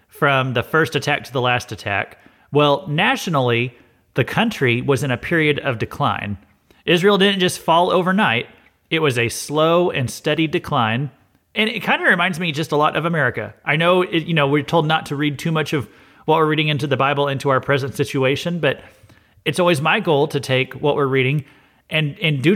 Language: English